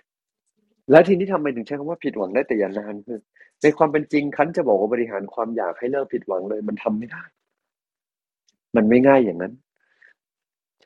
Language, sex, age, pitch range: Thai, male, 30-49, 115-145 Hz